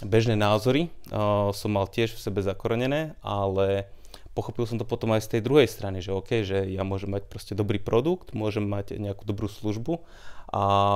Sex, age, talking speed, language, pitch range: male, 30-49, 185 wpm, Slovak, 100-115 Hz